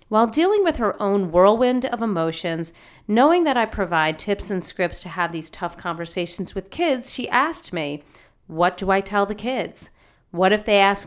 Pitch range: 170-245 Hz